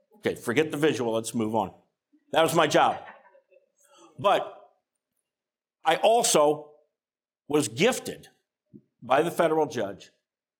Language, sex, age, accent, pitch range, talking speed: English, male, 50-69, American, 185-285 Hz, 115 wpm